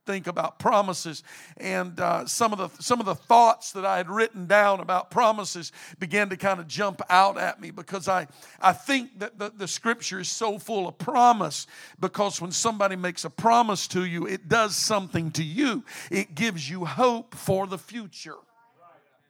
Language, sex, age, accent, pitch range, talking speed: English, male, 50-69, American, 170-205 Hz, 185 wpm